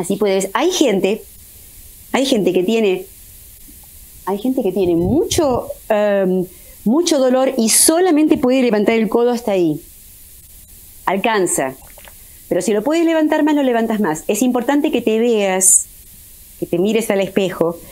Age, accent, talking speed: 30-49, Argentinian, 145 wpm